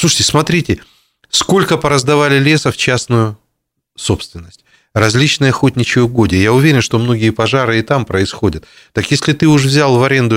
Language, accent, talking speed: Russian, native, 150 wpm